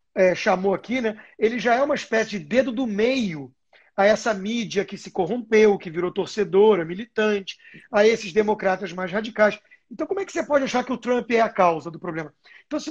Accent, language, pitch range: Brazilian, Portuguese, 195-260 Hz